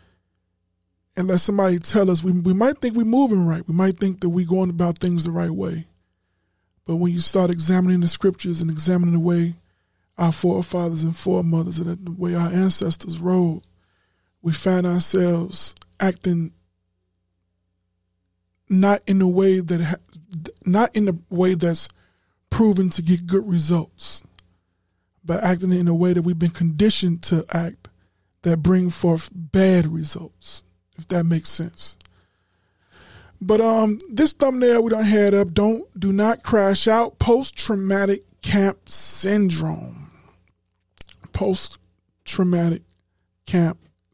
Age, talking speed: 20-39, 135 wpm